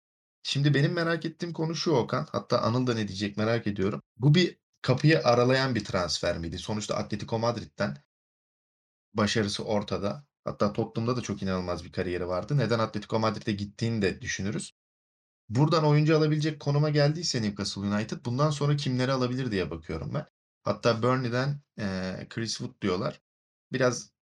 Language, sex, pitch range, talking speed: Turkish, male, 100-135 Hz, 150 wpm